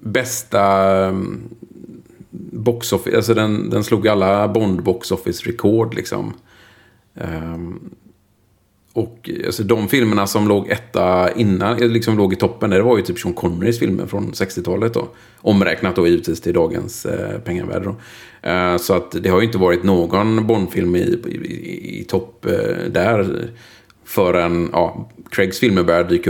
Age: 40-59